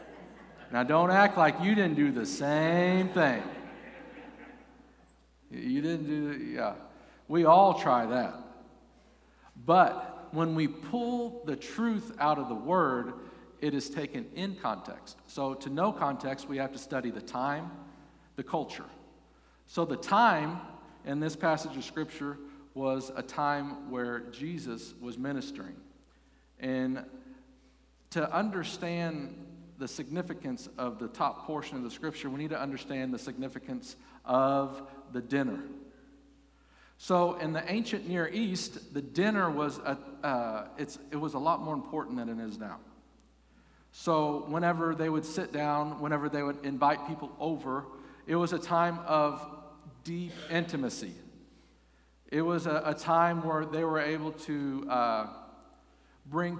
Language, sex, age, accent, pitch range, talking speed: English, male, 50-69, American, 140-175 Hz, 140 wpm